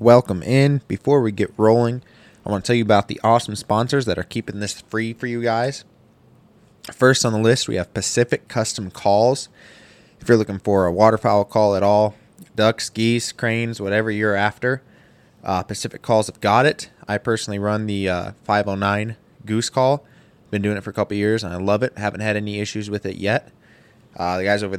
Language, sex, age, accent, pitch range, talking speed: English, male, 20-39, American, 100-120 Hz, 200 wpm